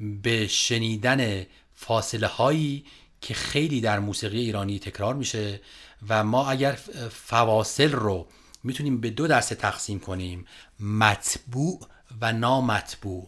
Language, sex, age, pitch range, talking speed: Persian, male, 30-49, 110-130 Hz, 115 wpm